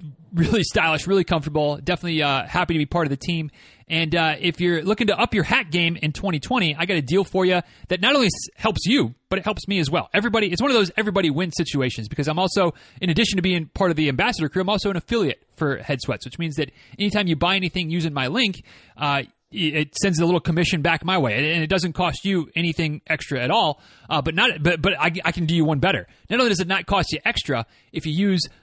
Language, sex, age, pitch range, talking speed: English, male, 30-49, 155-190 Hz, 250 wpm